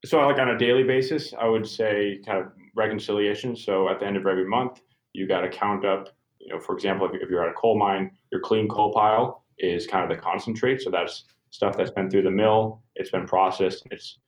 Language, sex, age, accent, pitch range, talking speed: English, male, 20-39, American, 95-120 Hz, 230 wpm